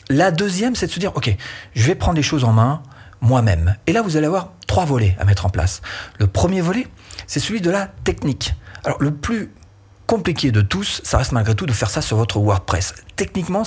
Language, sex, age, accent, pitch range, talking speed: French, male, 40-59, French, 100-135 Hz, 225 wpm